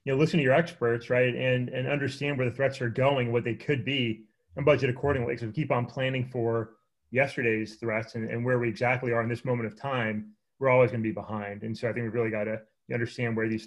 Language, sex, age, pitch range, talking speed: English, male, 30-49, 115-135 Hz, 260 wpm